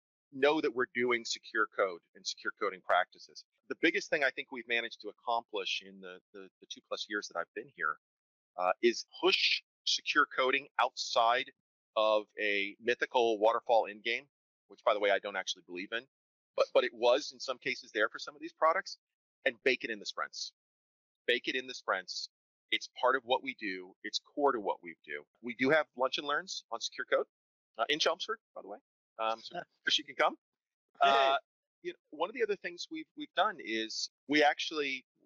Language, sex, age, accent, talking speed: English, male, 30-49, American, 205 wpm